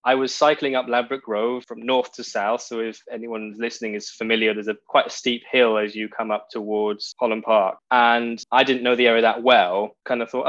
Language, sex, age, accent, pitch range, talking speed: English, male, 10-29, British, 110-125 Hz, 230 wpm